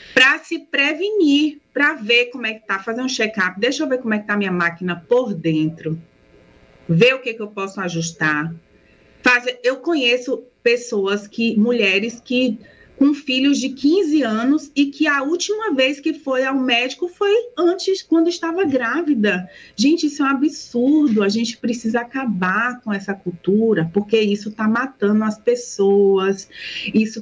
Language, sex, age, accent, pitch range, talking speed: Portuguese, female, 30-49, Brazilian, 190-255 Hz, 170 wpm